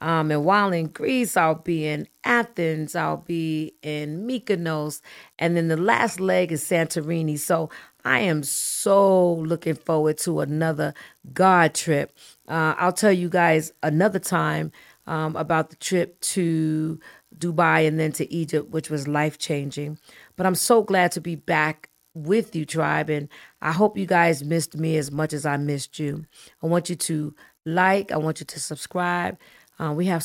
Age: 40-59